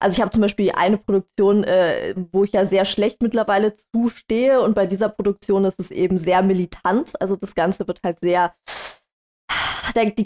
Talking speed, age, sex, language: 180 wpm, 20-39, female, German